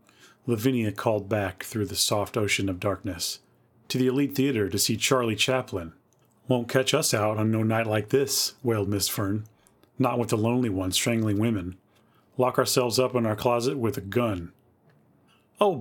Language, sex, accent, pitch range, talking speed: English, male, American, 100-125 Hz, 175 wpm